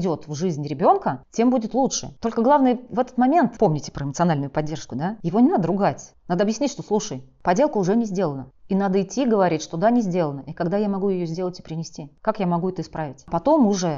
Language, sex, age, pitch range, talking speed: Russian, female, 30-49, 165-220 Hz, 220 wpm